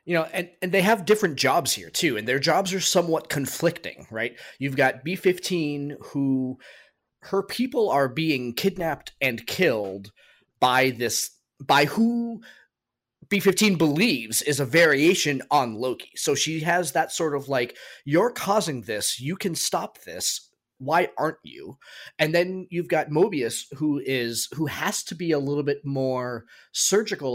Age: 30-49